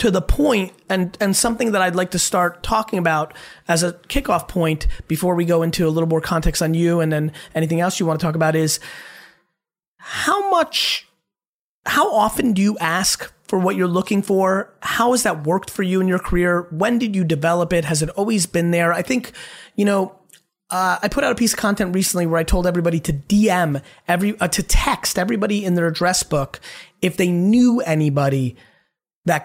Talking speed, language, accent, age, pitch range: 205 wpm, English, American, 30-49, 165-200 Hz